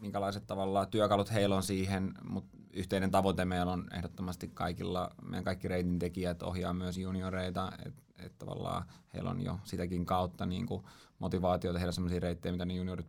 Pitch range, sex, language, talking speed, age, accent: 90-100 Hz, male, Finnish, 165 wpm, 20-39, native